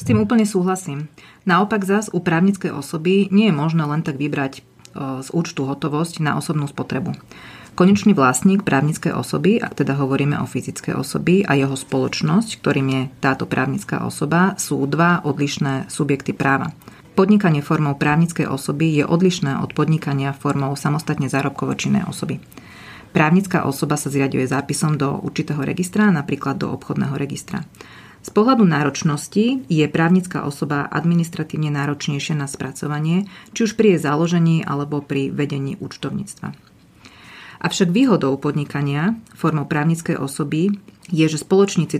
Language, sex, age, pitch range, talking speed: Slovak, female, 30-49, 140-175 Hz, 135 wpm